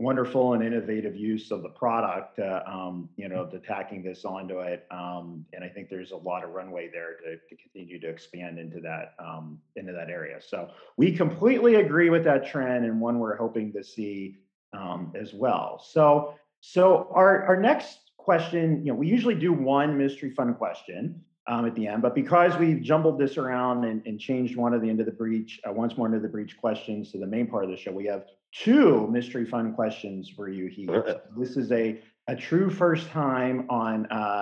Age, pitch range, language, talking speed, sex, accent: 40-59, 105-155 Hz, English, 205 wpm, male, American